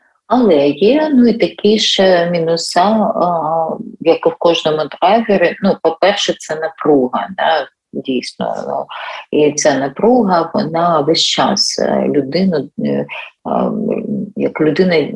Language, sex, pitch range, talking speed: Ukrainian, female, 160-205 Hz, 120 wpm